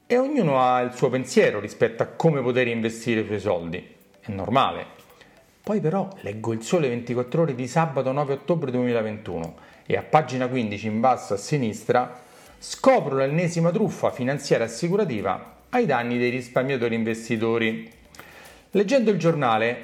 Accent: native